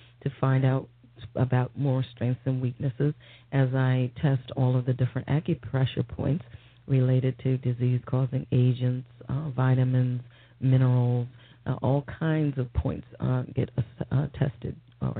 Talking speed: 135 wpm